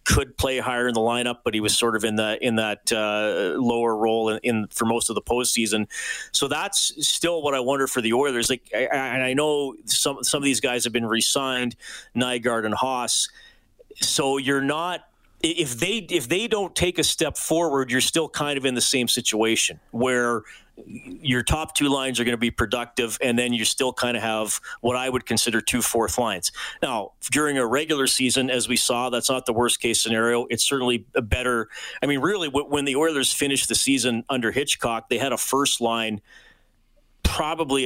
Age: 30-49